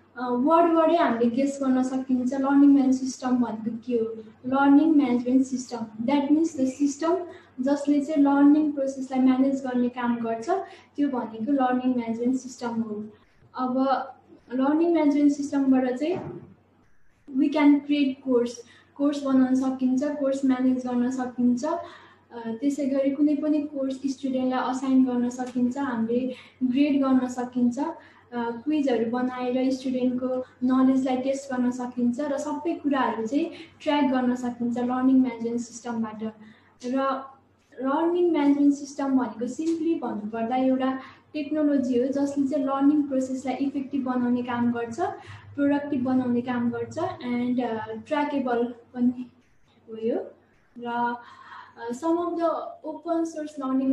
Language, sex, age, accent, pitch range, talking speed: English, female, 10-29, Indian, 245-285 Hz, 100 wpm